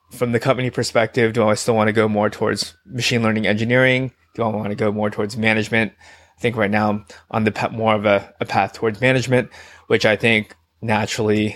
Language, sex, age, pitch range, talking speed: English, male, 20-39, 100-115 Hz, 210 wpm